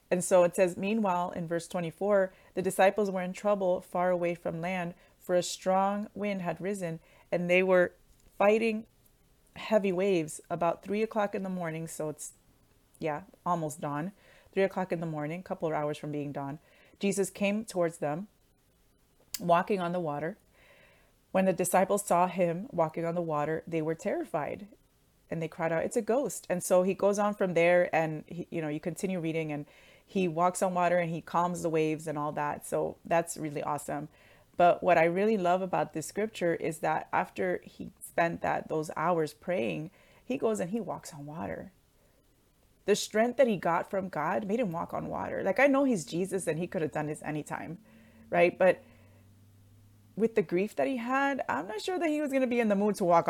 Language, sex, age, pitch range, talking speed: English, female, 30-49, 160-200 Hz, 200 wpm